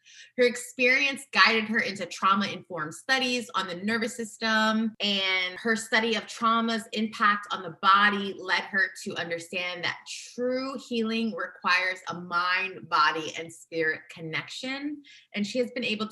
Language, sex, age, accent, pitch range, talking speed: English, female, 20-39, American, 190-240 Hz, 145 wpm